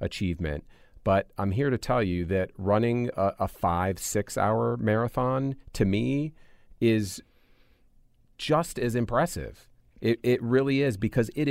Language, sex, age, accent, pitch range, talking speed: English, male, 40-59, American, 90-110 Hz, 135 wpm